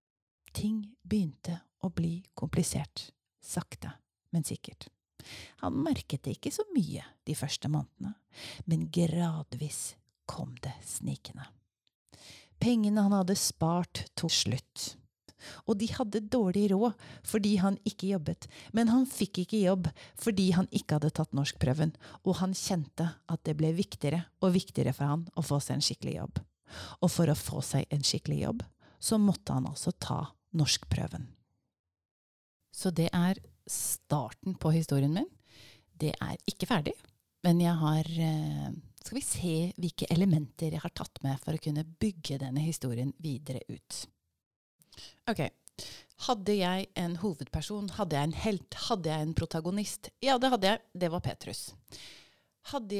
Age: 40-59